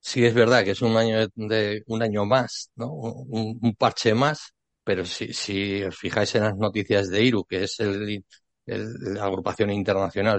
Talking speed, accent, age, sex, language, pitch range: 190 wpm, Spanish, 60-79, male, Spanish, 100-125 Hz